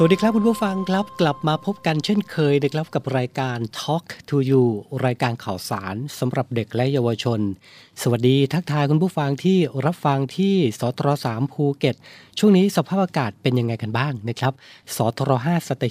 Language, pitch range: Thai, 120-150 Hz